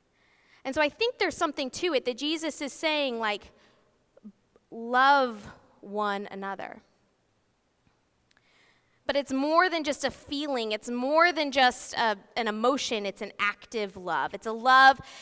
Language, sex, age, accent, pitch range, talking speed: English, female, 20-39, American, 220-285 Hz, 145 wpm